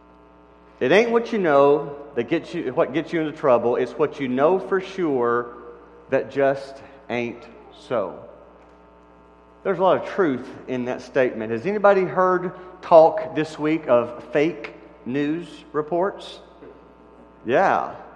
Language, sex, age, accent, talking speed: English, male, 40-59, American, 140 wpm